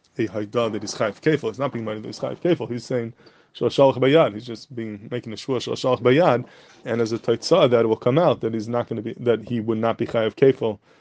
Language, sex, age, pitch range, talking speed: English, male, 20-39, 110-125 Hz, 250 wpm